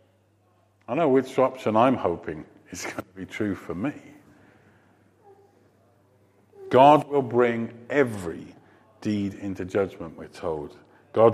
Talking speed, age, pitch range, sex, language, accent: 125 wpm, 50-69, 95-120 Hz, male, English, British